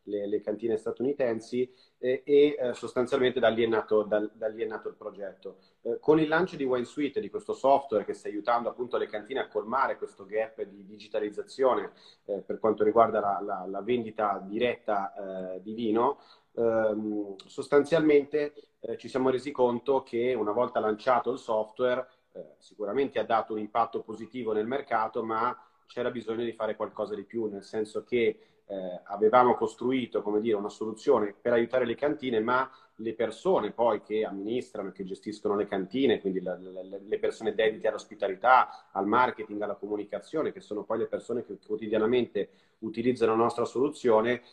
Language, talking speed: Italian, 175 wpm